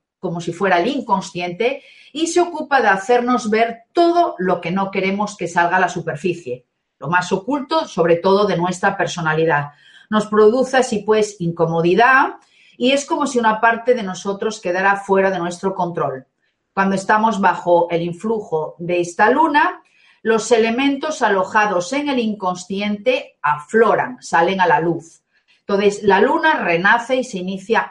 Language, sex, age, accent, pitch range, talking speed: Spanish, female, 40-59, Spanish, 180-240 Hz, 155 wpm